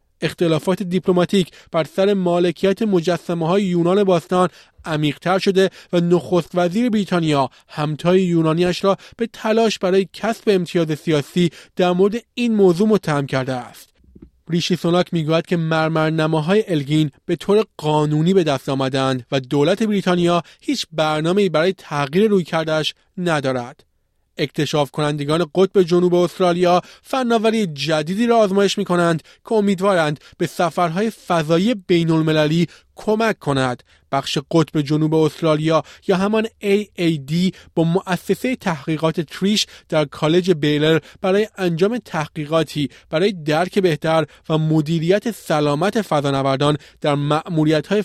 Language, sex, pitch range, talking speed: Persian, male, 155-195 Hz, 125 wpm